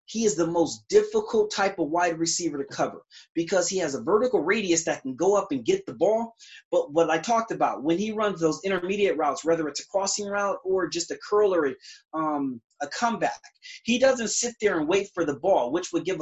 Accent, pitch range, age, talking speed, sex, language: American, 165-230 Hz, 30-49, 225 wpm, male, English